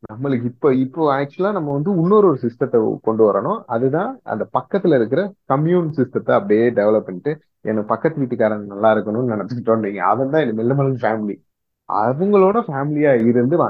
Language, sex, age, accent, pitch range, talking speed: Tamil, male, 30-49, native, 120-175 Hz, 145 wpm